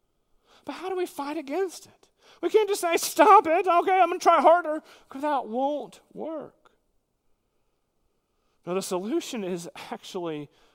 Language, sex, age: English, male, 40-59